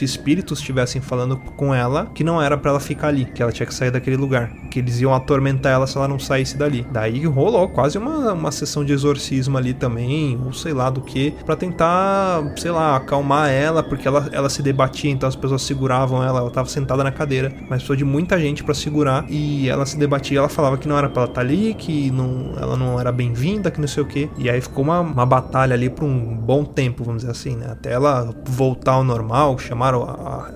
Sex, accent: male, Brazilian